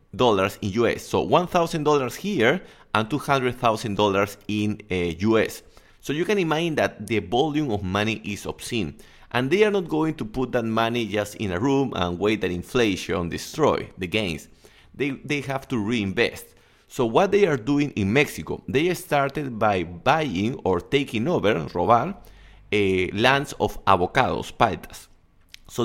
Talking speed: 165 wpm